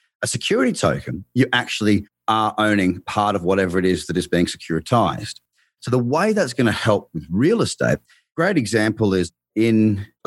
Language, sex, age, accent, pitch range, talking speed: English, male, 30-49, Australian, 95-120 Hz, 180 wpm